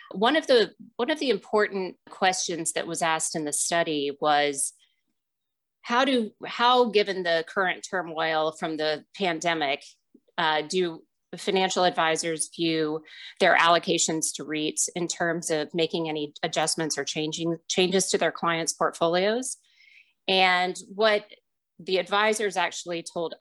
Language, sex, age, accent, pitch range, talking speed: English, female, 30-49, American, 160-195 Hz, 135 wpm